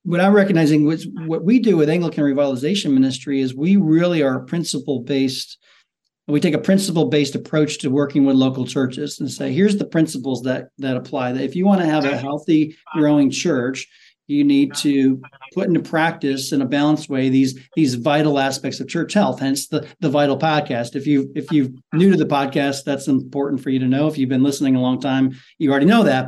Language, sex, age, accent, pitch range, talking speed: English, male, 40-59, American, 135-165 Hz, 210 wpm